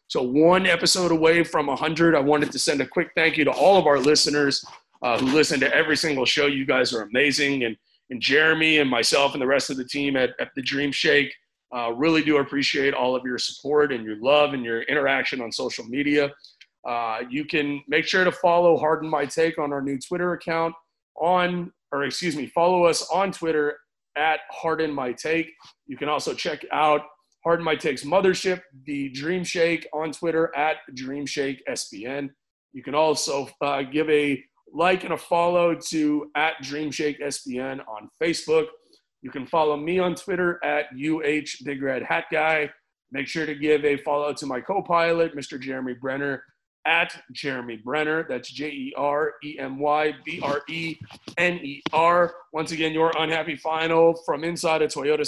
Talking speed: 190 wpm